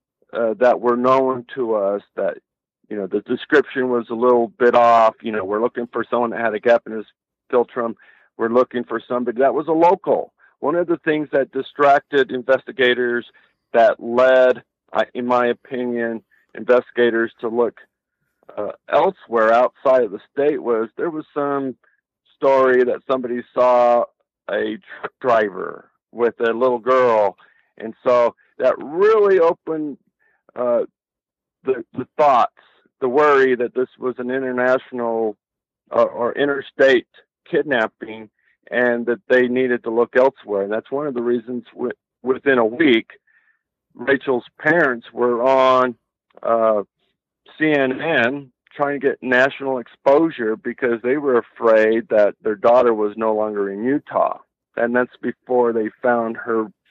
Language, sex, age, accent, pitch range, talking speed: English, male, 50-69, American, 115-130 Hz, 145 wpm